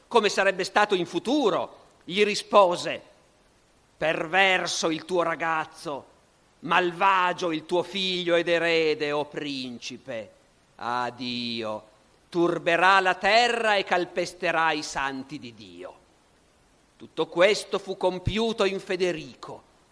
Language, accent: Italian, native